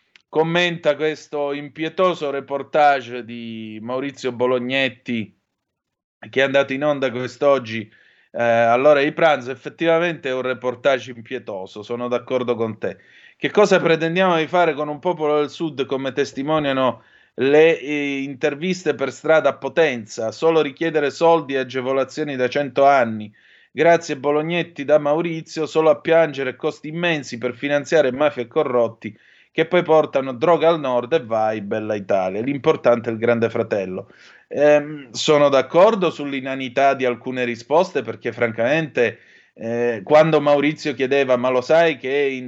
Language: Italian